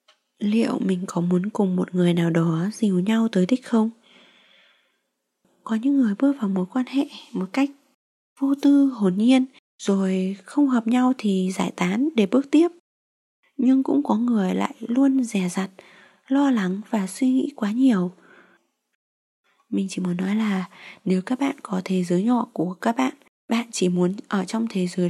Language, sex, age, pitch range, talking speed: Vietnamese, female, 20-39, 190-255 Hz, 180 wpm